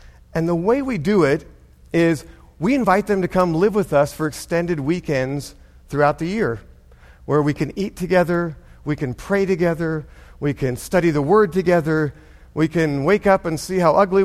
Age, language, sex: 50-69, English, male